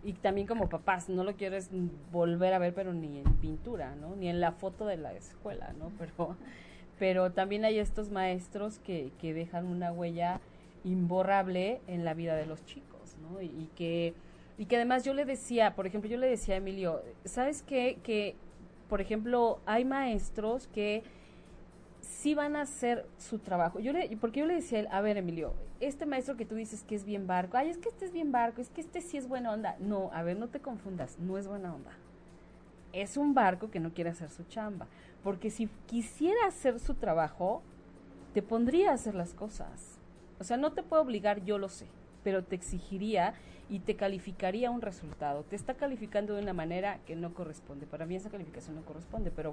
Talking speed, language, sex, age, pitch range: 205 wpm, Spanish, female, 30-49, 175-230 Hz